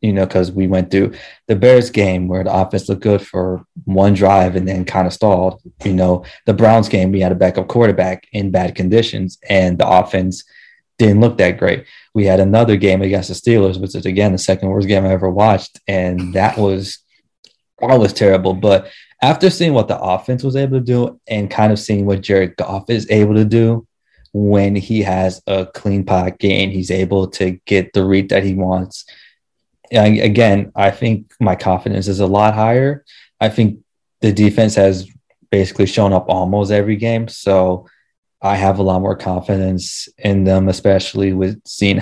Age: 20-39